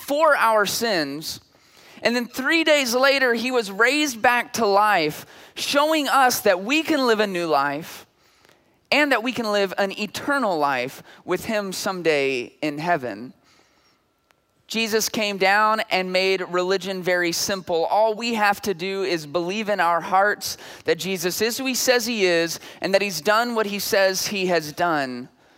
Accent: American